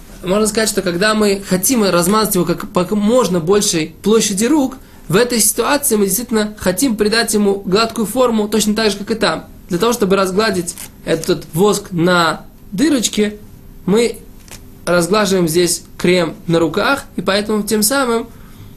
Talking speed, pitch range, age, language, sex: 150 wpm, 170-215 Hz, 20-39, Russian, male